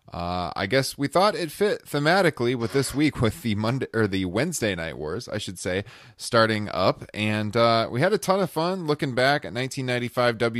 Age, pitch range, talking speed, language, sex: 30-49, 95-135 Hz, 205 wpm, English, male